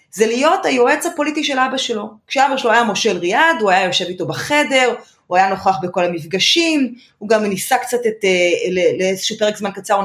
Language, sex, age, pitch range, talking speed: Hebrew, female, 30-49, 190-270 Hz, 185 wpm